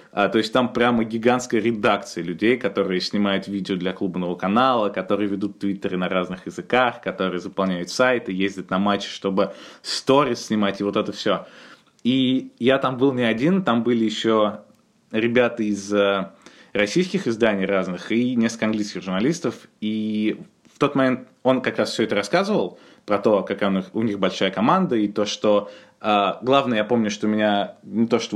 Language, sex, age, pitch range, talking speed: Russian, male, 20-39, 100-125 Hz, 165 wpm